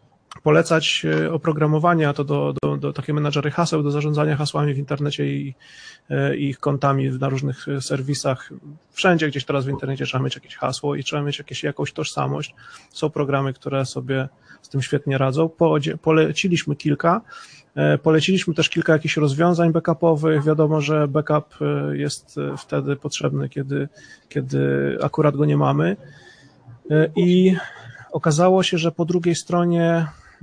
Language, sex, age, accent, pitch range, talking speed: English, male, 30-49, Polish, 140-160 Hz, 140 wpm